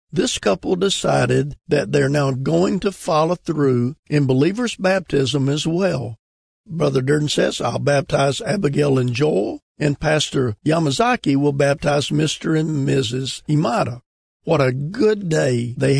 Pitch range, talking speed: 130-165 Hz, 140 wpm